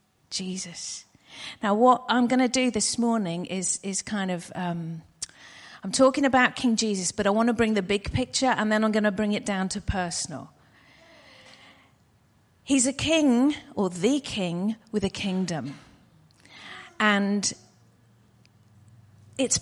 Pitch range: 195-255 Hz